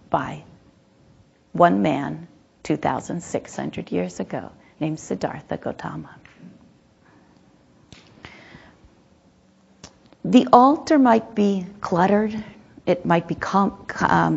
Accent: American